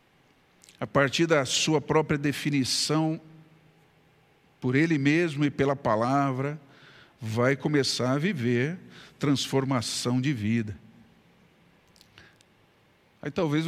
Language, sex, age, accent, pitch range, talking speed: Portuguese, male, 50-69, Brazilian, 125-155 Hz, 90 wpm